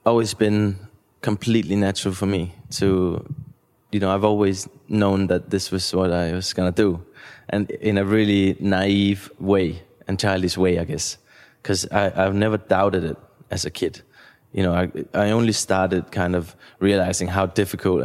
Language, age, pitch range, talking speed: English, 20-39, 90-100 Hz, 165 wpm